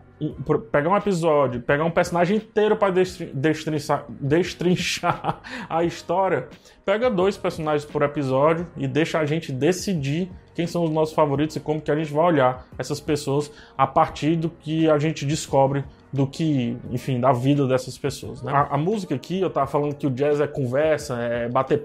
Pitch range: 140-180 Hz